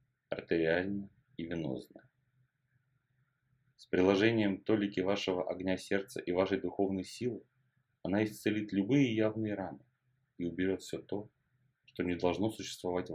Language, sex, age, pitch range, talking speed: Russian, male, 30-49, 90-130 Hz, 120 wpm